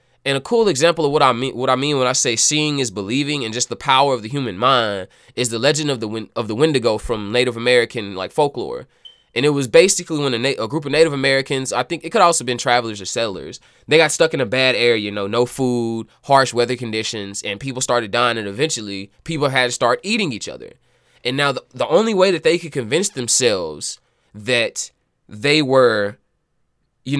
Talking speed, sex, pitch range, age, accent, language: 225 wpm, male, 120-155 Hz, 20-39, American, English